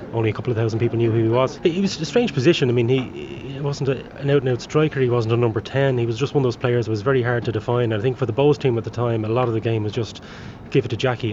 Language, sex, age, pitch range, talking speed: English, male, 20-39, 115-130 Hz, 345 wpm